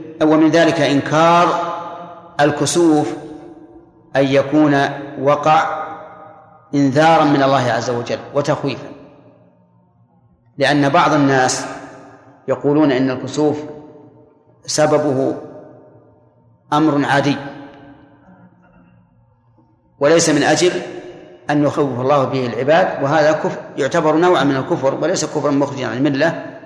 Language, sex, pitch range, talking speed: Arabic, male, 140-160 Hz, 90 wpm